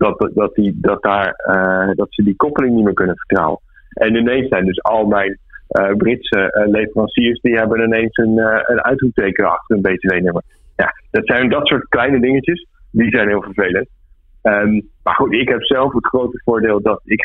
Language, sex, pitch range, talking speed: Dutch, male, 95-115 Hz, 175 wpm